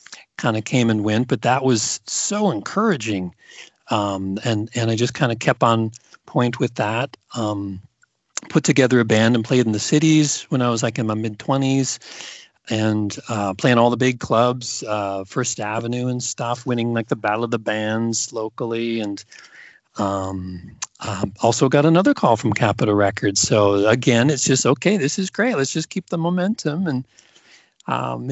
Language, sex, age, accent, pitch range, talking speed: English, male, 40-59, American, 110-135 Hz, 175 wpm